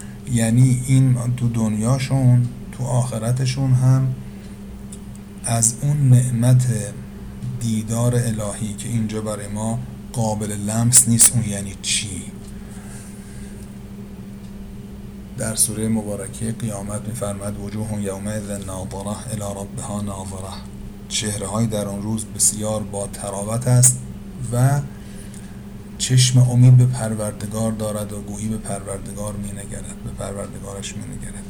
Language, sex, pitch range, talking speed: Persian, male, 100-120 Hz, 110 wpm